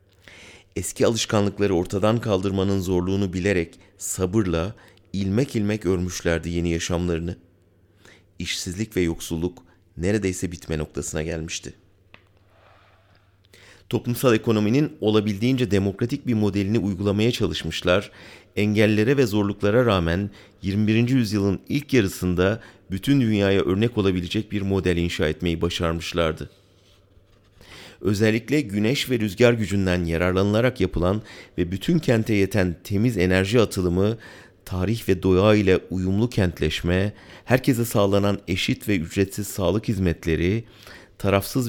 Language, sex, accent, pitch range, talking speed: German, male, Turkish, 90-110 Hz, 105 wpm